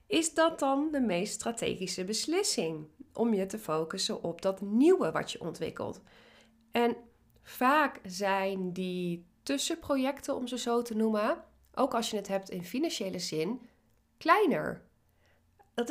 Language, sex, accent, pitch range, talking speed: Dutch, female, Dutch, 185-250 Hz, 140 wpm